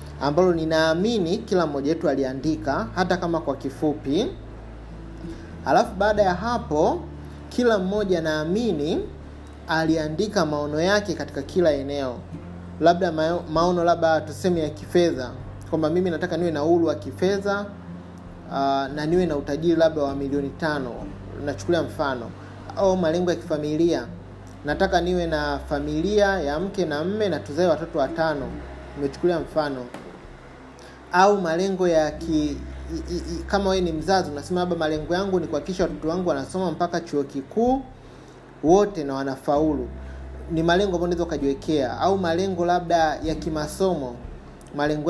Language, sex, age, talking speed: Swahili, male, 30-49, 135 wpm